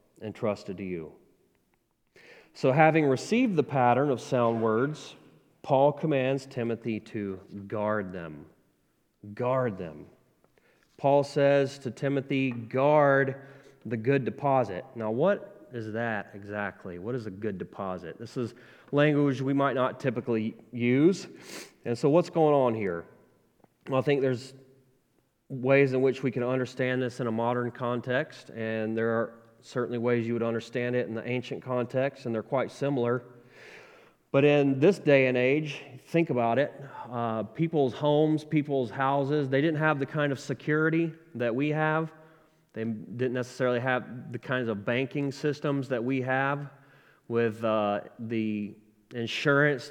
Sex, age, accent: male, 30-49, American